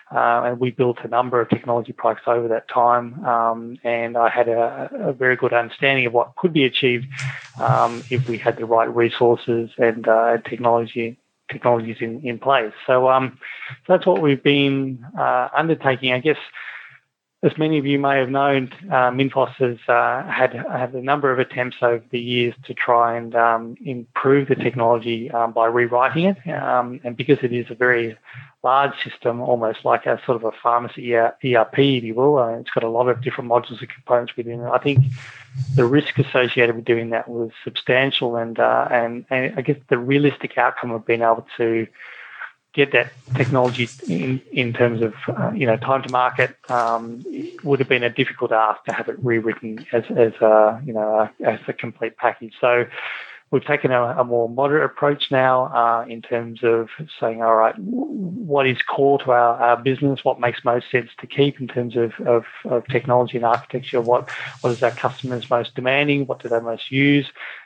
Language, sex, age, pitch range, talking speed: English, male, 20-39, 115-135 Hz, 195 wpm